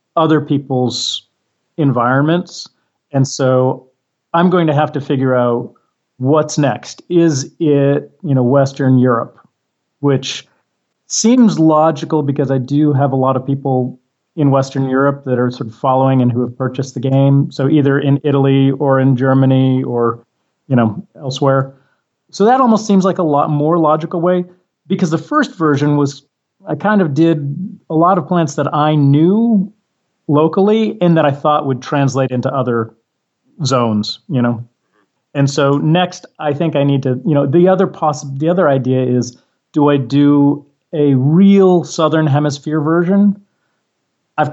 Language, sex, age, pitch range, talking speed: English, male, 40-59, 130-165 Hz, 160 wpm